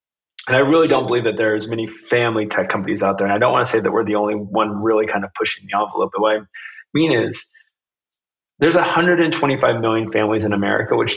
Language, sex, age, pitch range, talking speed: English, male, 20-39, 110-135 Hz, 235 wpm